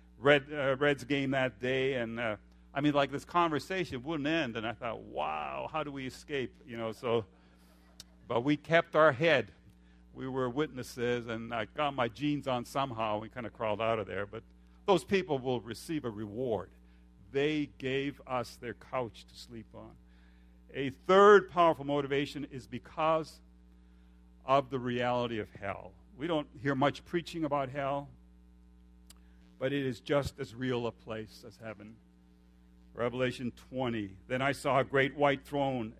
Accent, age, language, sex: American, 50-69, English, male